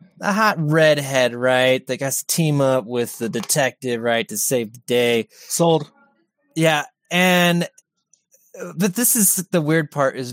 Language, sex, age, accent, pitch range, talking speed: English, male, 20-39, American, 155-200 Hz, 155 wpm